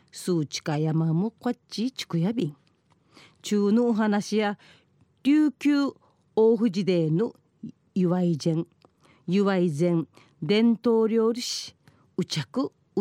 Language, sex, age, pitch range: Japanese, female, 40-59, 155-230 Hz